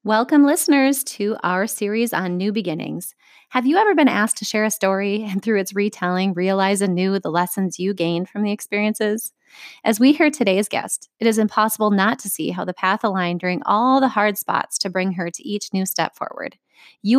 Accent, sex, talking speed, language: American, female, 205 wpm, English